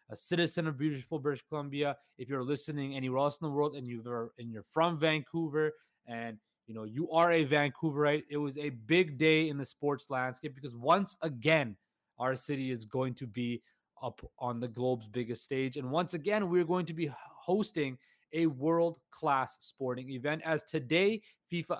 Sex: male